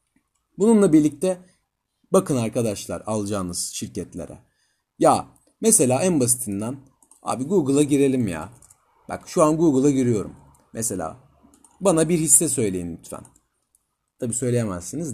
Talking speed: 105 wpm